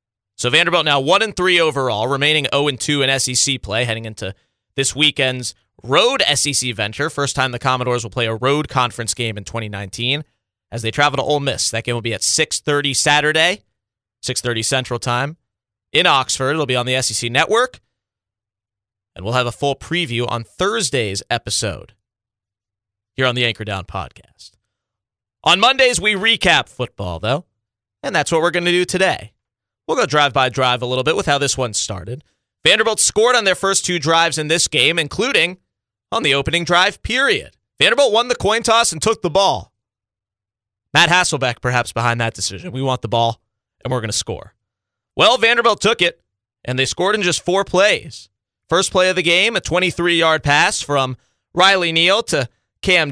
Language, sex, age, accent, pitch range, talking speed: English, male, 30-49, American, 110-160 Hz, 175 wpm